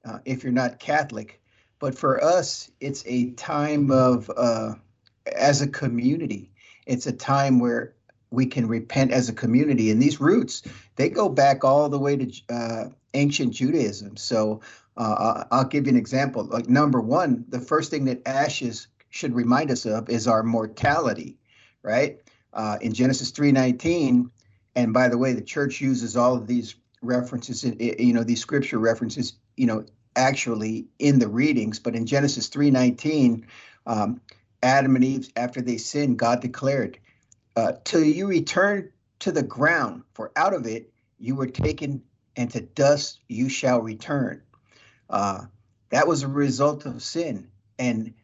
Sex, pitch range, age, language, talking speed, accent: male, 115-135 Hz, 50-69, English, 160 wpm, American